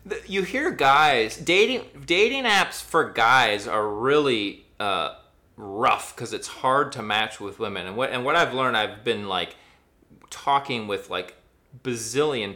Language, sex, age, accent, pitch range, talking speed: English, male, 30-49, American, 115-175 Hz, 155 wpm